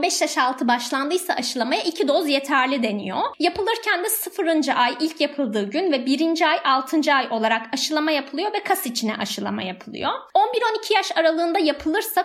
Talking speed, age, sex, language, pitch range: 160 wpm, 20-39, female, Turkish, 260-335 Hz